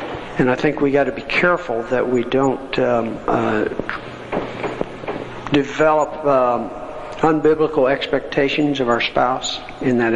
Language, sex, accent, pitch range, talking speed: English, male, American, 120-150 Hz, 130 wpm